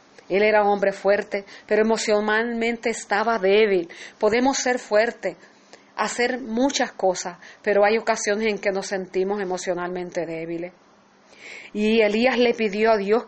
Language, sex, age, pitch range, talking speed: English, female, 40-59, 185-230 Hz, 135 wpm